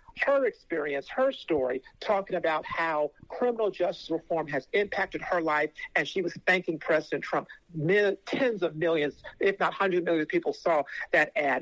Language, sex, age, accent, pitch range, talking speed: English, male, 50-69, American, 170-225 Hz, 170 wpm